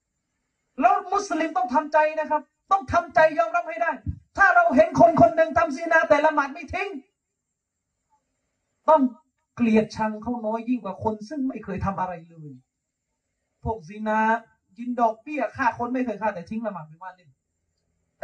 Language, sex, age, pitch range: Thai, male, 30-49, 190-305 Hz